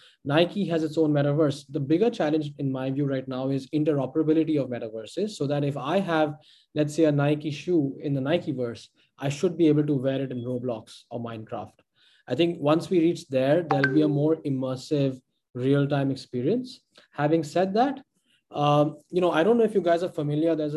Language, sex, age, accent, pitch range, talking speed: English, male, 20-39, Indian, 135-165 Hz, 200 wpm